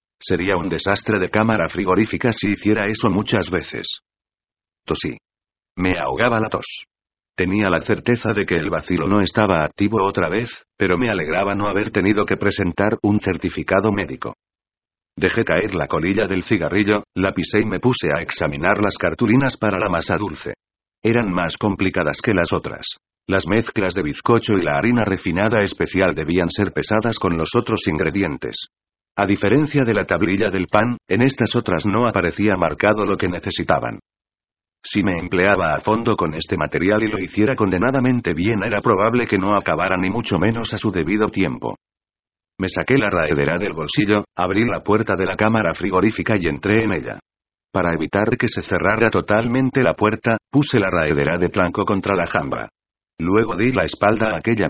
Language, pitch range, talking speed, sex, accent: Spanish, 90-110 Hz, 175 wpm, male, Spanish